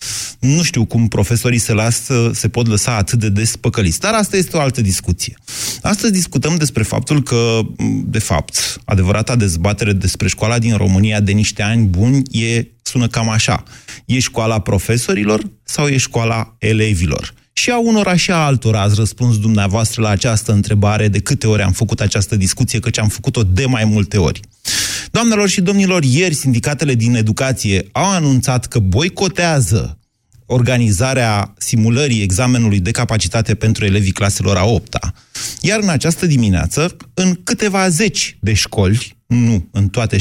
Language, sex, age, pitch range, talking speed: Romanian, male, 30-49, 105-135 Hz, 160 wpm